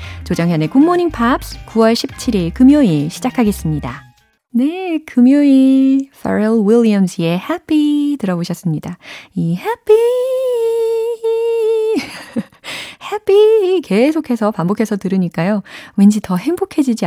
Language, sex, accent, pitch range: Korean, female, native, 175-265 Hz